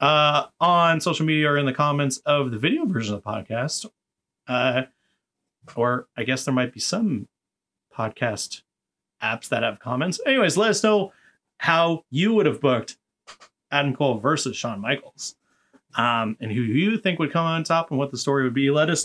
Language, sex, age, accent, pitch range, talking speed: English, male, 30-49, American, 130-165 Hz, 185 wpm